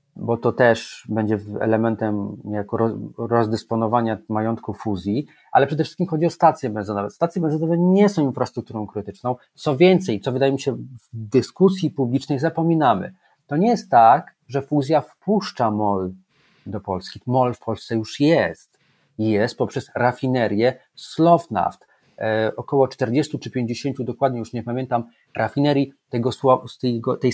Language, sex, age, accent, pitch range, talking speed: Polish, male, 40-59, native, 115-155 Hz, 130 wpm